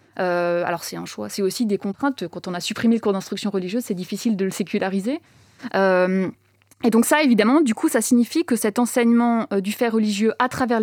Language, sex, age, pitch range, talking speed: French, female, 20-39, 190-250 Hz, 215 wpm